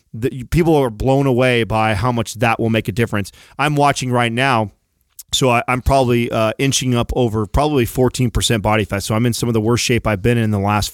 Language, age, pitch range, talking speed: English, 30-49, 115-135 Hz, 220 wpm